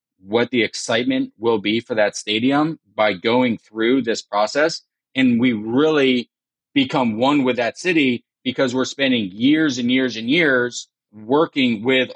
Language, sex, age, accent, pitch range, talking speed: English, male, 30-49, American, 115-135 Hz, 155 wpm